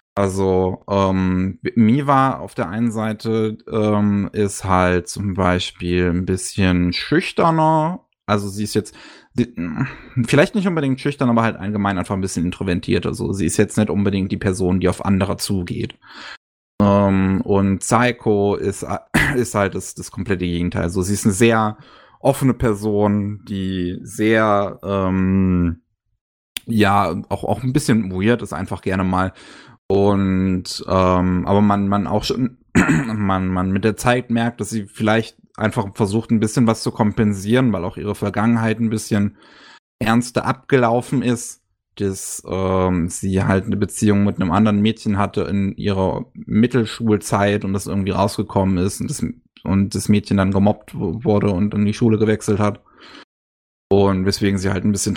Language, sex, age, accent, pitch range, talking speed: German, male, 20-39, German, 95-110 Hz, 155 wpm